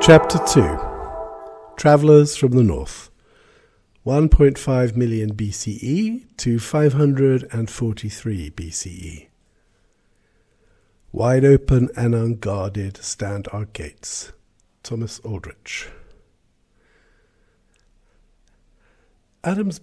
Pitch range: 105-150 Hz